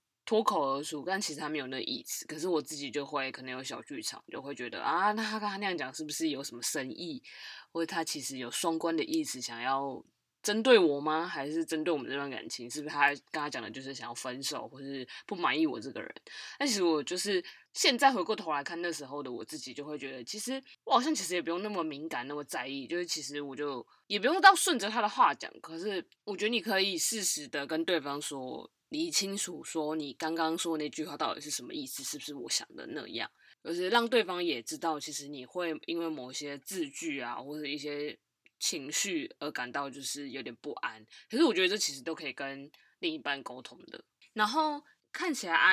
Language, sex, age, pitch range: Chinese, female, 20-39, 145-210 Hz